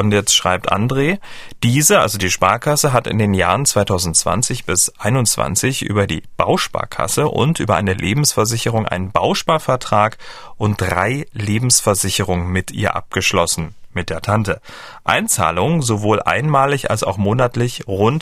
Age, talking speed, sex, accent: 40-59, 130 wpm, male, German